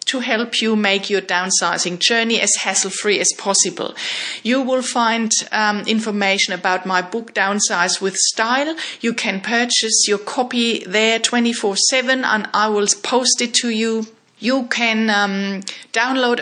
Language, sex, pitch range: English, female, 195-240 Hz